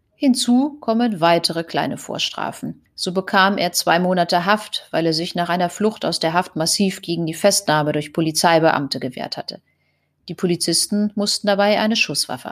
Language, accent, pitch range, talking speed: German, German, 170-220 Hz, 165 wpm